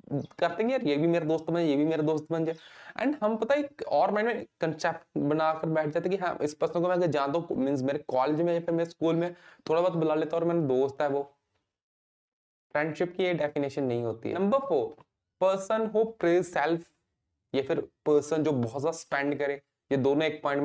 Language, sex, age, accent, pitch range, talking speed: Hindi, male, 20-39, native, 130-170 Hz, 80 wpm